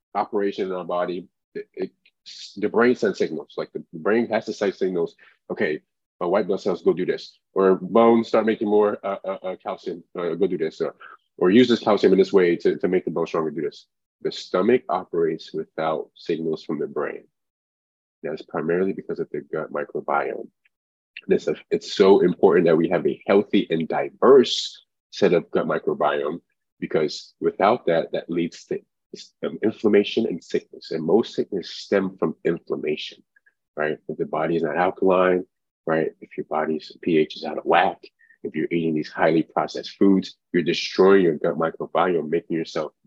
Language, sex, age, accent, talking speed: English, male, 20-39, American, 180 wpm